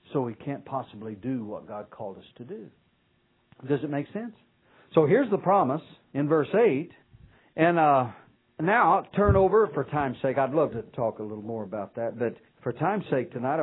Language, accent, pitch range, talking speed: English, American, 125-185 Hz, 200 wpm